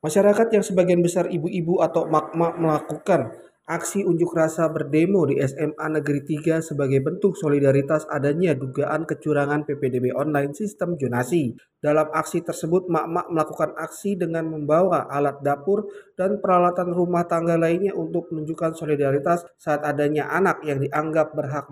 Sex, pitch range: male, 150-185 Hz